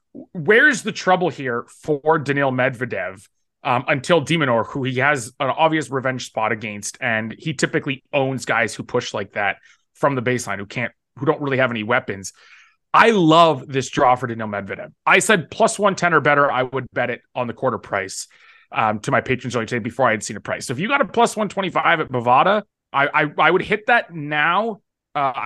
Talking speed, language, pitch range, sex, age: 215 wpm, English, 125-155 Hz, male, 30-49